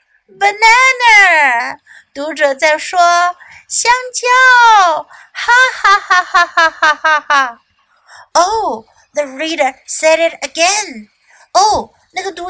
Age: 50-69